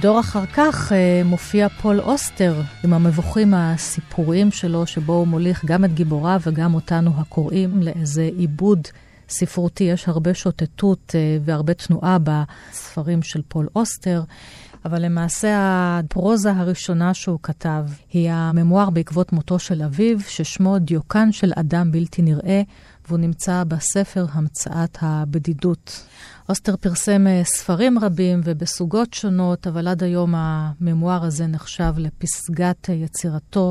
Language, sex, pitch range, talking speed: Hebrew, female, 160-185 Hz, 125 wpm